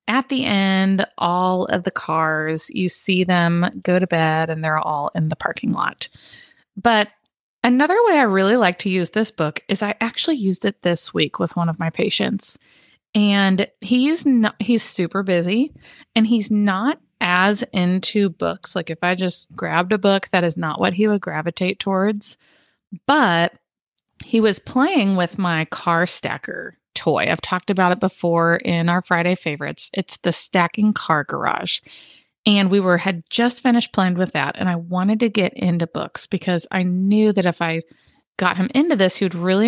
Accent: American